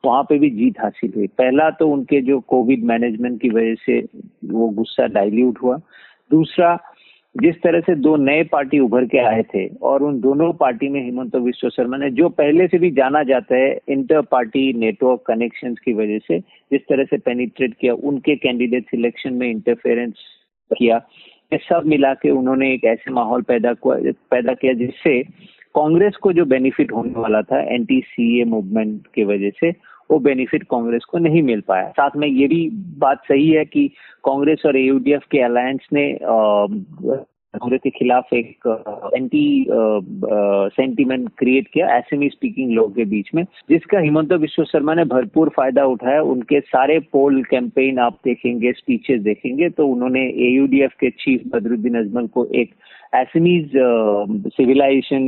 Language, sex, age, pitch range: Hindi, male, 50-69, 120-155 Hz